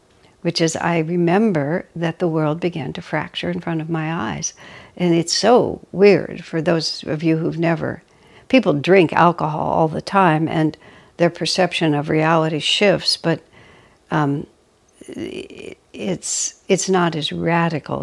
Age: 60-79